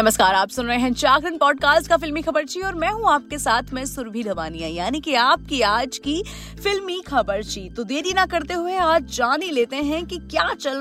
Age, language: 30-49, Hindi